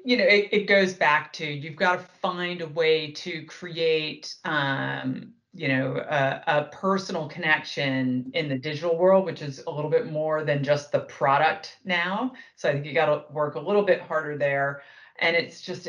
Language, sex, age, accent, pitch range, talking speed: English, female, 40-59, American, 135-170 Hz, 195 wpm